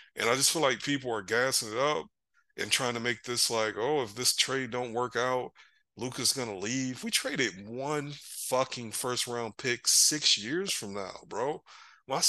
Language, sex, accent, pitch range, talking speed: English, male, American, 110-135 Hz, 190 wpm